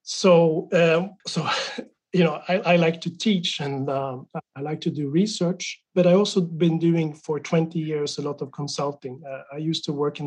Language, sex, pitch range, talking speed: English, male, 145-170 Hz, 205 wpm